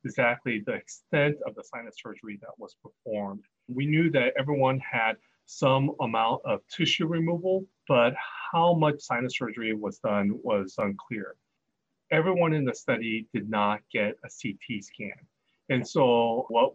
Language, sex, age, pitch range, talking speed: English, male, 30-49, 105-145 Hz, 150 wpm